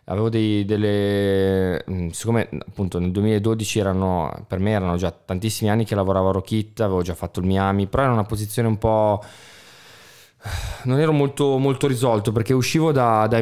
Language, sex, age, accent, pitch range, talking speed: Italian, male, 20-39, native, 95-110 Hz, 170 wpm